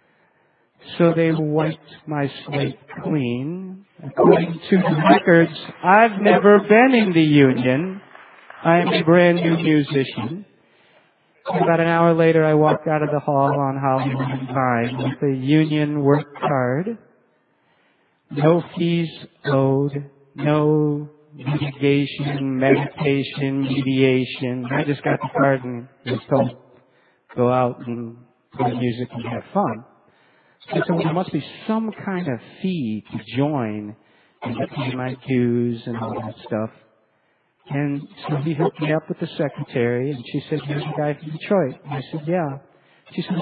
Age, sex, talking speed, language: 50-69, male, 145 wpm, English